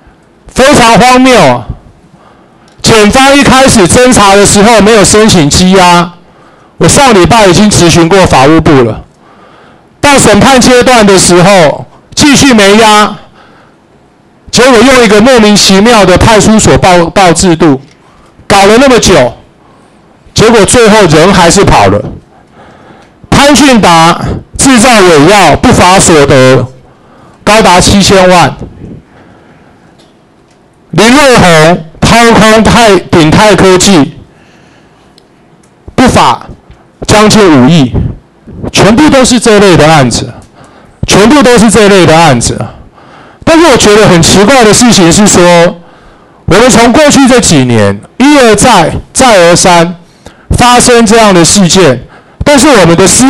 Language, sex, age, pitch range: Chinese, male, 50-69, 170-230 Hz